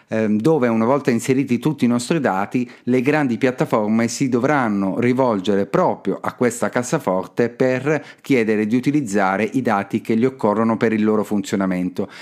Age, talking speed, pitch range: 40-59, 150 wpm, 105-130 Hz